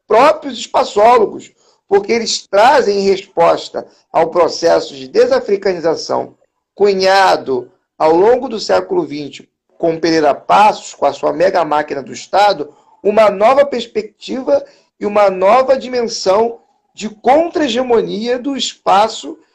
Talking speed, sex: 115 wpm, male